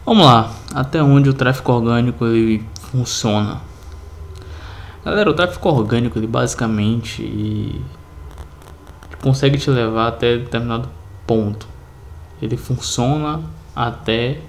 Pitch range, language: 90-125 Hz, Portuguese